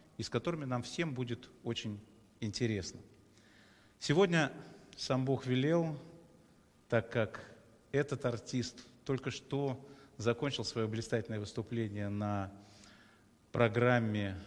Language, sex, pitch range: Russian, male, 110-140 Hz